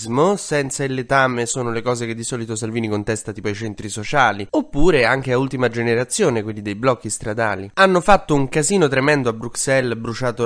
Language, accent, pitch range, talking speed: Italian, native, 110-140 Hz, 185 wpm